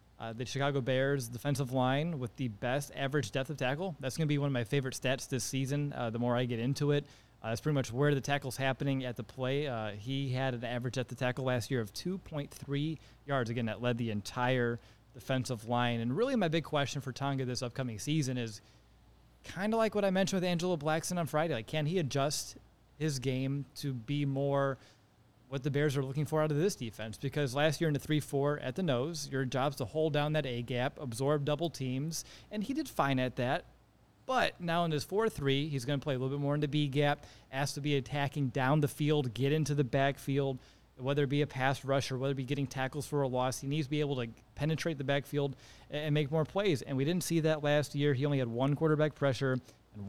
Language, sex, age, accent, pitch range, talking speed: English, male, 30-49, American, 125-150 Hz, 235 wpm